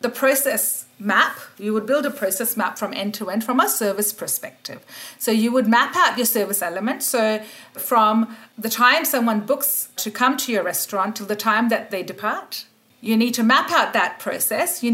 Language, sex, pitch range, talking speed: English, female, 210-265 Hz, 200 wpm